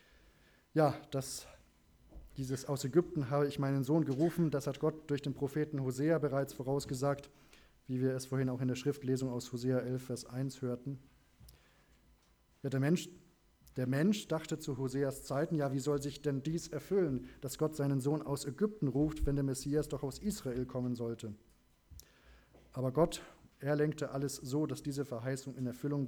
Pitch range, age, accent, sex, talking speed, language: 125-145 Hz, 20-39, German, male, 175 wpm, German